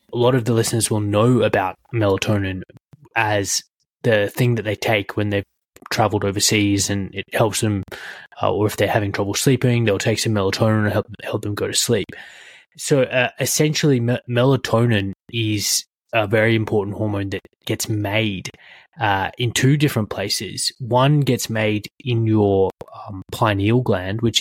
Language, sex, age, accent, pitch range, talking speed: English, male, 20-39, Australian, 100-115 Hz, 165 wpm